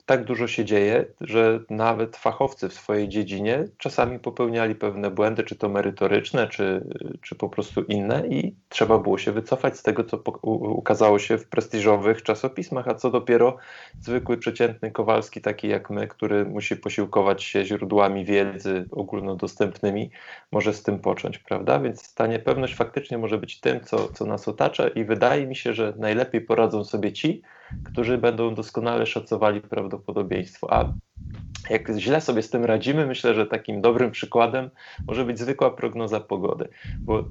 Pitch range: 105-120 Hz